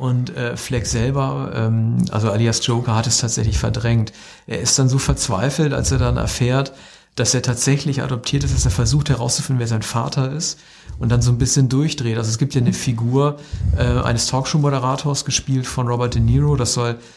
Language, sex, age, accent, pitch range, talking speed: German, male, 50-69, German, 115-130 Hz, 195 wpm